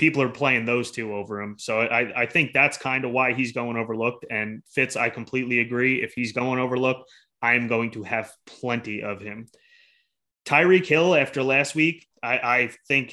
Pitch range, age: 115-130 Hz, 20-39